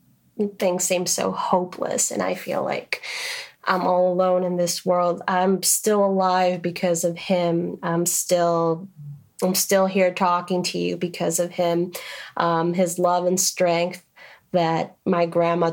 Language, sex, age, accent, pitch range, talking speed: English, female, 30-49, American, 165-185 Hz, 150 wpm